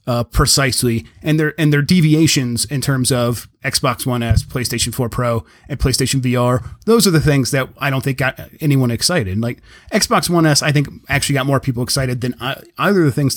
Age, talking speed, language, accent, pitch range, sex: 30-49, 205 wpm, English, American, 115-140 Hz, male